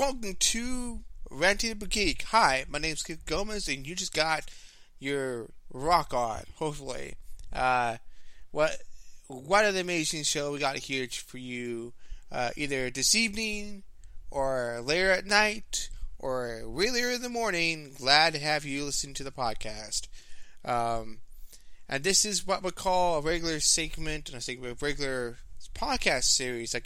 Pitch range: 120-175 Hz